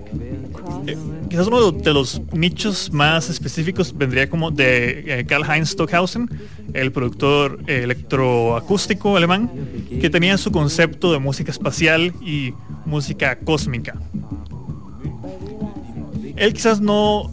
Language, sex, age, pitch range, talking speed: English, male, 20-39, 135-175 Hz, 100 wpm